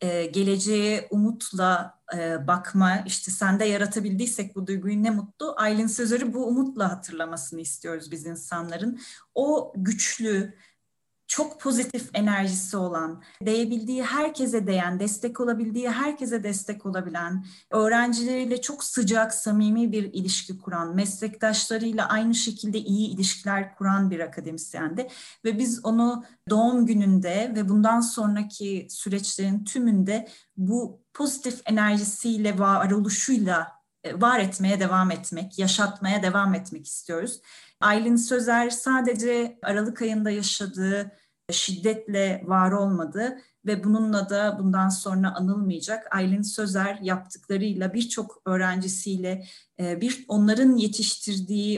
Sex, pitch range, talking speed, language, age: female, 190-225 Hz, 110 wpm, Turkish, 30-49